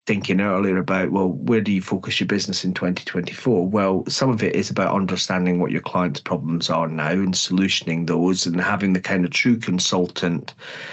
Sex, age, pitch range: male, 30-49, 90-105 Hz